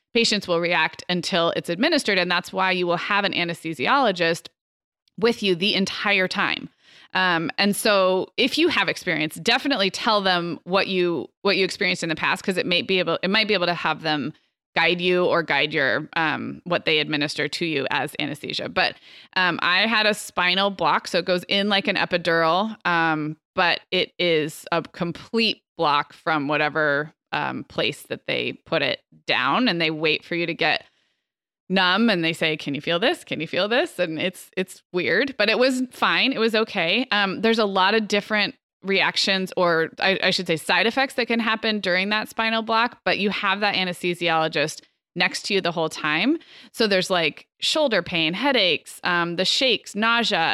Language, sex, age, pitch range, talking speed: English, female, 20-39, 165-215 Hz, 195 wpm